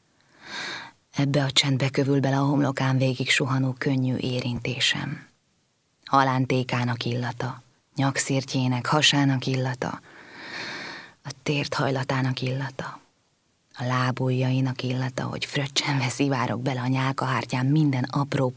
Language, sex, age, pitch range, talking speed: Hungarian, female, 20-39, 130-140 Hz, 100 wpm